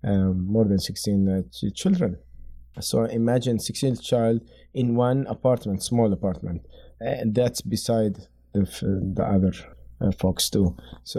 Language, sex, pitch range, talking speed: English, male, 105-125 Hz, 145 wpm